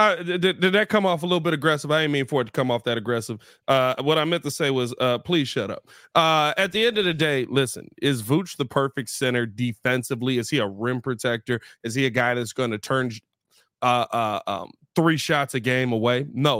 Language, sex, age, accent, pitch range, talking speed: English, male, 30-49, American, 125-155 Hz, 230 wpm